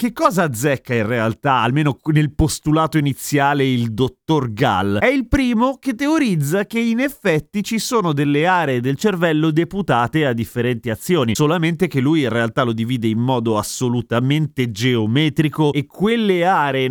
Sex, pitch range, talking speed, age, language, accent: male, 125-180 Hz, 155 wpm, 30-49, Italian, native